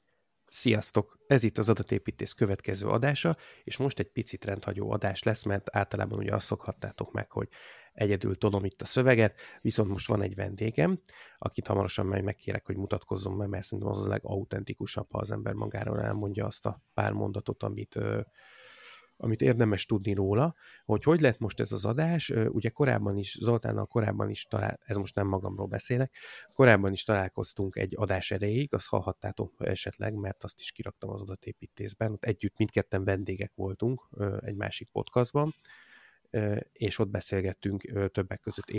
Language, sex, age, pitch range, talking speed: Hungarian, male, 30-49, 100-115 Hz, 160 wpm